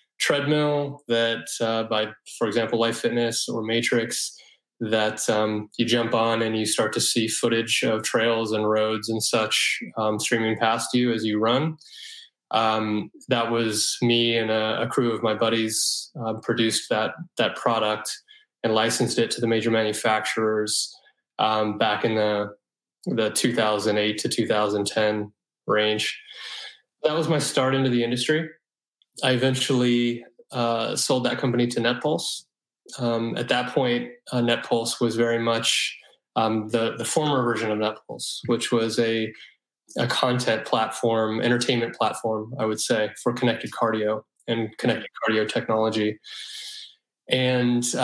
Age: 20-39